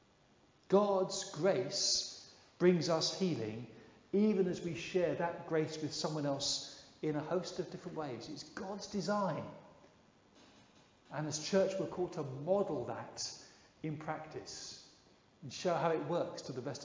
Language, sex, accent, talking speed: English, male, British, 145 wpm